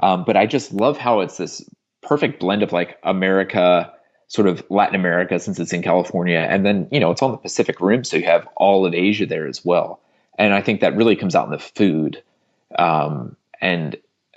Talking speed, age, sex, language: 215 wpm, 30-49, male, English